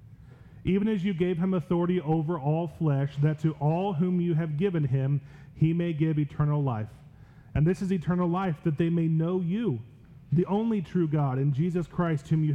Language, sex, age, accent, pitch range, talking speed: English, male, 30-49, American, 140-170 Hz, 195 wpm